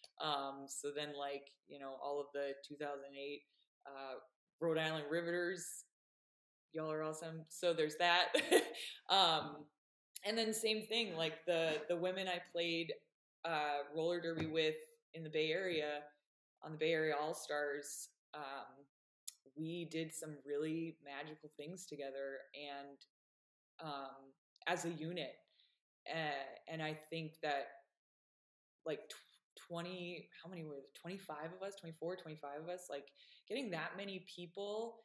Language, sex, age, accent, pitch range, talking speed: English, female, 20-39, American, 150-175 Hz, 140 wpm